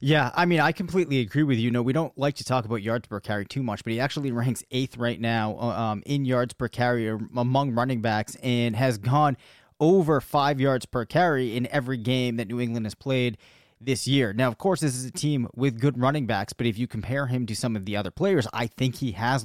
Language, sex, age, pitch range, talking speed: English, male, 20-39, 120-140 Hz, 245 wpm